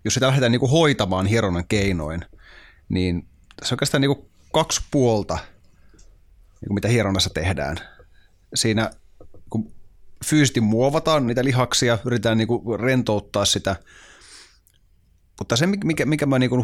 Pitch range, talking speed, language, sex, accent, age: 95-130 Hz, 140 wpm, Finnish, male, native, 30-49